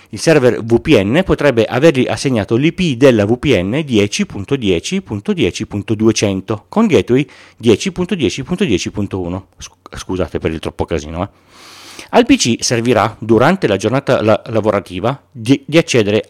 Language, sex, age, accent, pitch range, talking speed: Italian, male, 40-59, native, 105-155 Hz, 105 wpm